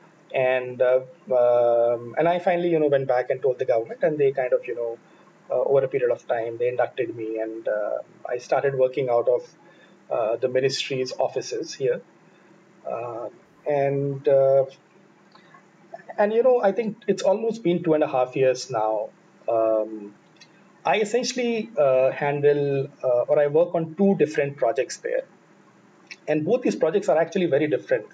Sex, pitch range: male, 130-180 Hz